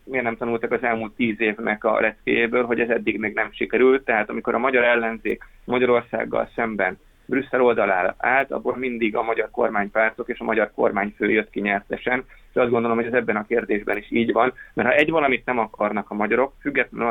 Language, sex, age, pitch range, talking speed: Hungarian, male, 20-39, 110-125 Hz, 200 wpm